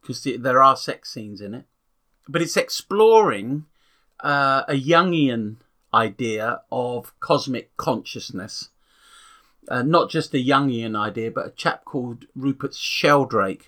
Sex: male